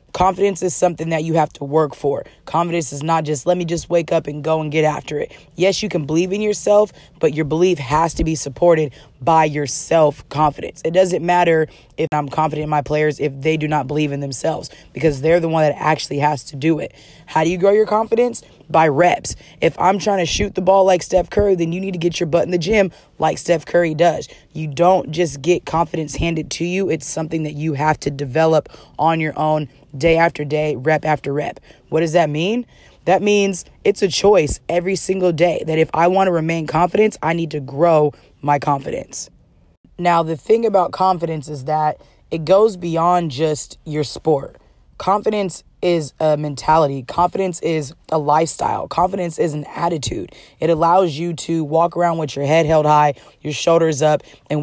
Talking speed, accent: 205 wpm, American